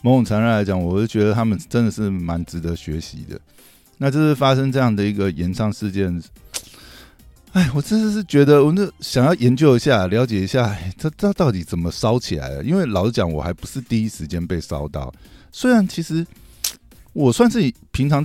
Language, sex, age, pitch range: Chinese, male, 50-69, 90-135 Hz